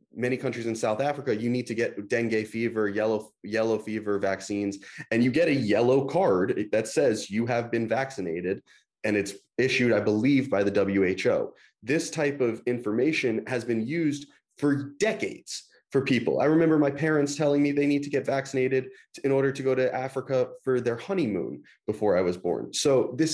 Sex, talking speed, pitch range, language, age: male, 185 wpm, 105-140 Hz, English, 30-49